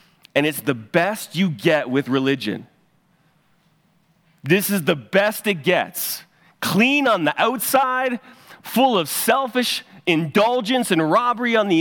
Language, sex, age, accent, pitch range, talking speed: English, male, 30-49, American, 160-200 Hz, 130 wpm